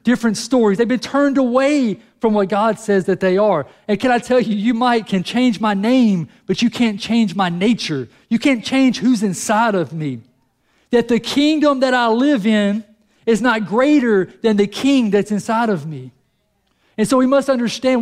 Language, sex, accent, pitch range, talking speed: English, male, American, 180-245 Hz, 195 wpm